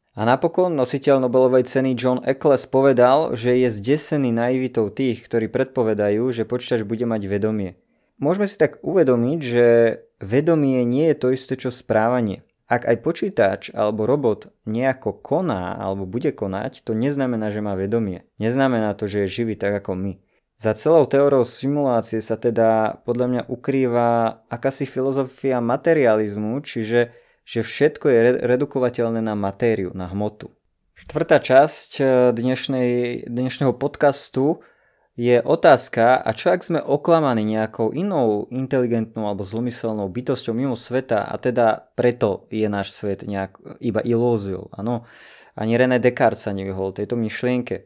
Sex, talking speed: male, 140 wpm